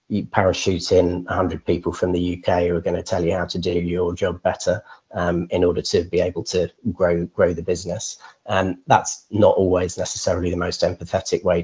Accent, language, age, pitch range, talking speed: British, English, 30-49, 85-95 Hz, 205 wpm